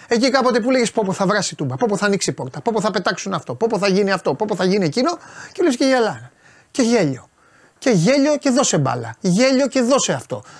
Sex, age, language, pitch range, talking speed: male, 30-49, Greek, 160-245 Hz, 220 wpm